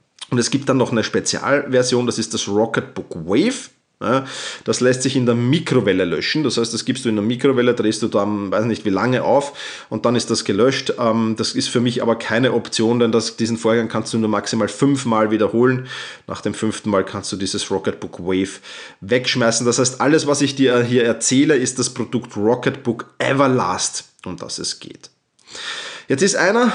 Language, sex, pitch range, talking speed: German, male, 115-145 Hz, 195 wpm